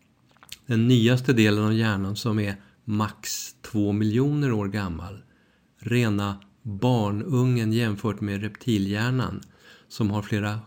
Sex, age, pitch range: male, 50-69, 105-120 Hz